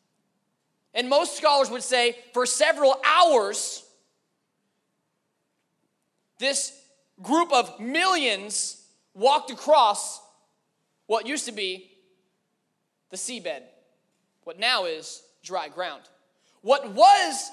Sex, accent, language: male, American, English